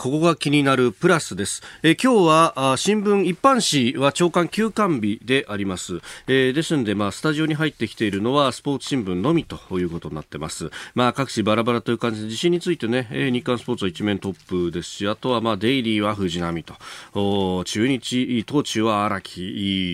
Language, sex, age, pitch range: Japanese, male, 40-59, 100-160 Hz